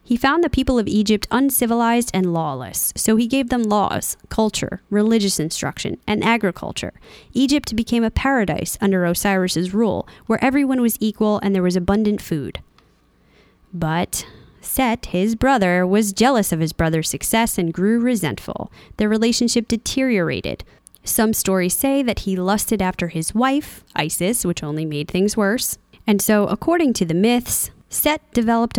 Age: 20-39